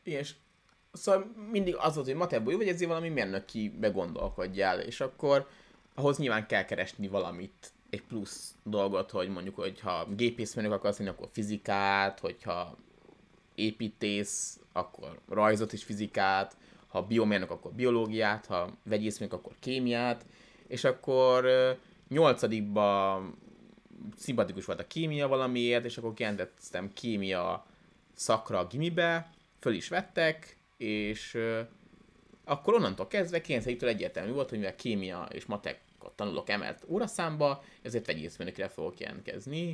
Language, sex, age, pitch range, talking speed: Hungarian, male, 20-39, 105-140 Hz, 125 wpm